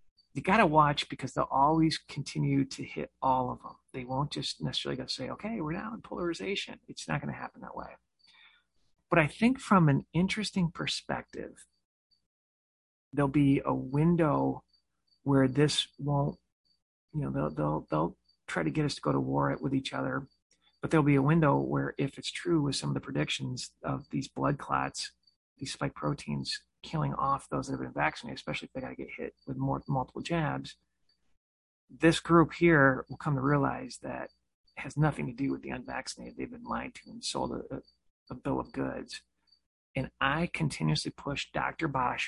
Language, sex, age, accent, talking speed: English, male, 40-59, American, 185 wpm